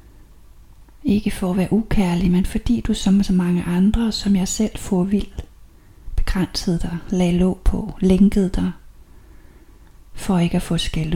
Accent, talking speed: native, 155 wpm